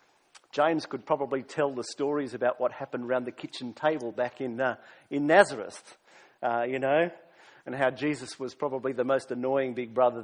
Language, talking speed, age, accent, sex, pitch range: English, 180 wpm, 50-69, Australian, male, 130-185 Hz